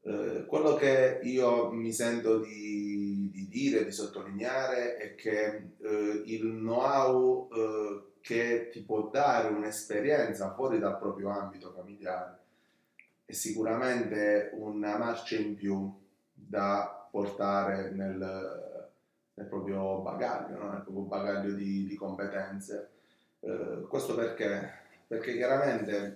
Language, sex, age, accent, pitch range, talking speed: Italian, male, 30-49, native, 100-115 Hz, 110 wpm